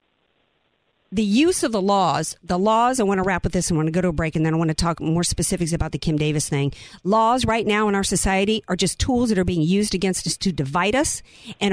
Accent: American